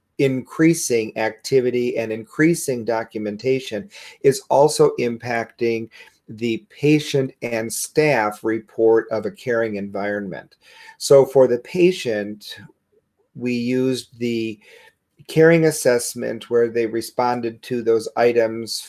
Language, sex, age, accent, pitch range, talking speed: English, male, 40-59, American, 115-140 Hz, 100 wpm